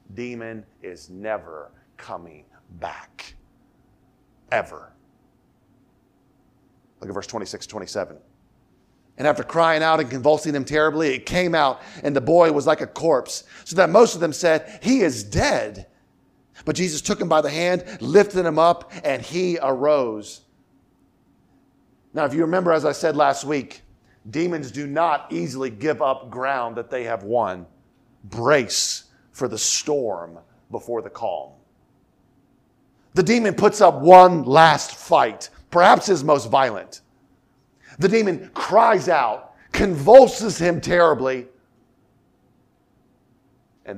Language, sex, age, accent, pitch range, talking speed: English, male, 40-59, American, 125-165 Hz, 130 wpm